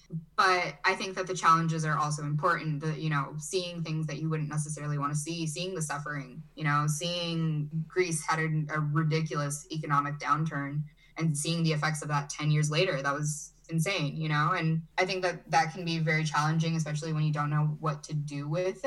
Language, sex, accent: English, female, American